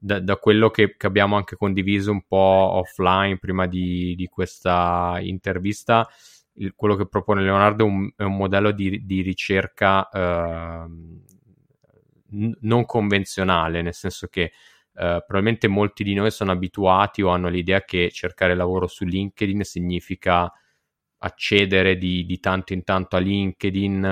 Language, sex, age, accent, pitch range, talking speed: Italian, male, 20-39, native, 90-100 Hz, 140 wpm